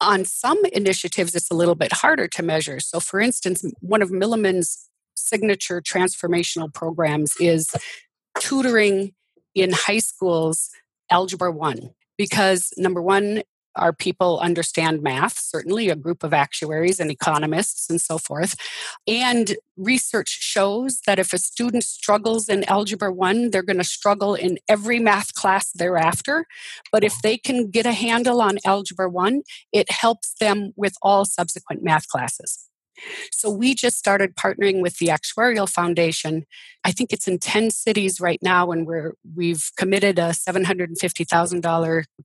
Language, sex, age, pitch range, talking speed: English, female, 40-59, 170-215 Hz, 145 wpm